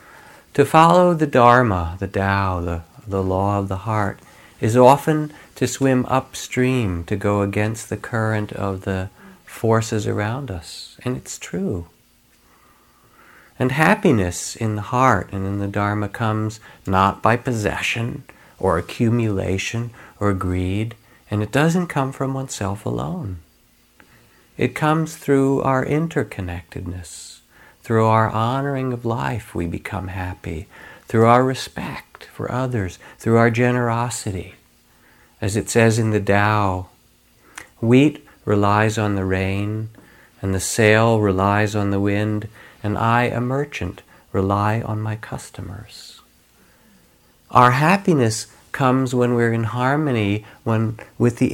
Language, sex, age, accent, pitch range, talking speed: English, male, 50-69, American, 100-125 Hz, 130 wpm